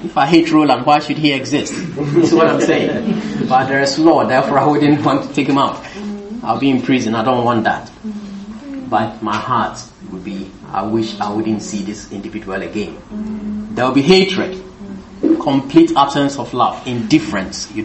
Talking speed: 185 wpm